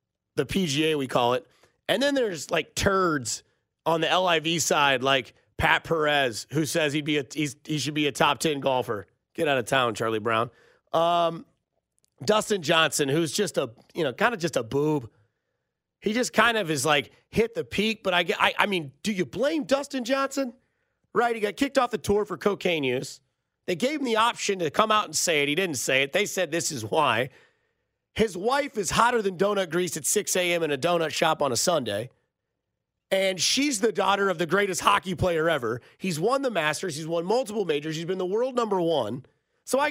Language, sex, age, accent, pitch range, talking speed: English, male, 30-49, American, 150-215 Hz, 215 wpm